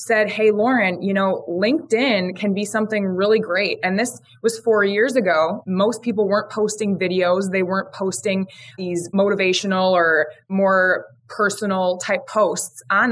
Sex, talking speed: female, 150 wpm